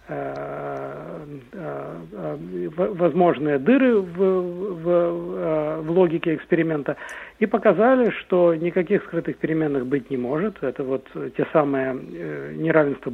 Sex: male